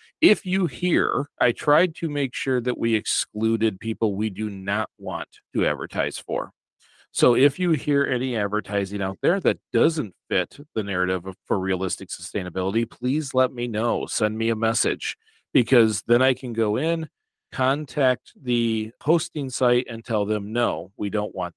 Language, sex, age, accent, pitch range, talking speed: English, male, 40-59, American, 100-125 Hz, 170 wpm